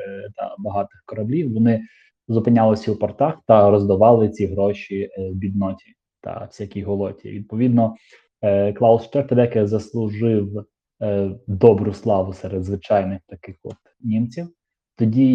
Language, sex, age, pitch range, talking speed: Ukrainian, male, 20-39, 105-120 Hz, 105 wpm